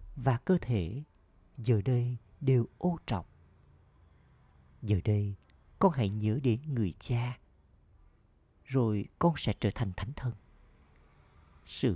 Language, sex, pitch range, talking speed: Vietnamese, male, 95-125 Hz, 120 wpm